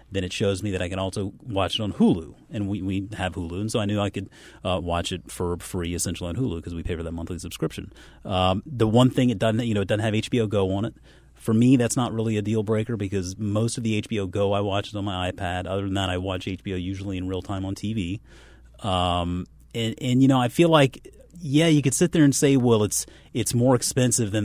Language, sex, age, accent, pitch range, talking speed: English, male, 30-49, American, 95-120 Hz, 260 wpm